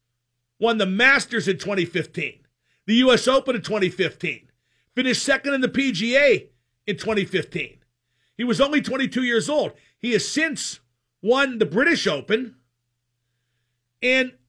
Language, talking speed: English, 130 wpm